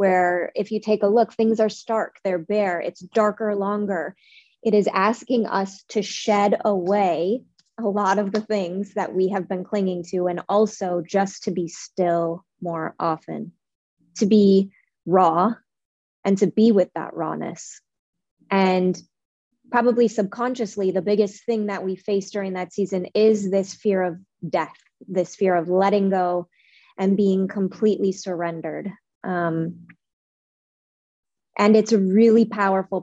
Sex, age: female, 20-39